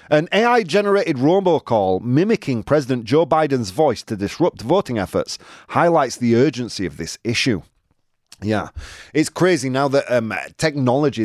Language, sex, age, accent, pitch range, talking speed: English, male, 30-49, British, 95-145 Hz, 135 wpm